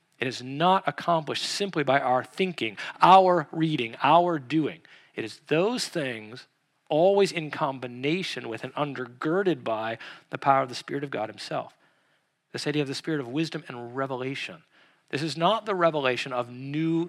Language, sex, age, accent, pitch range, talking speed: English, male, 40-59, American, 140-190 Hz, 165 wpm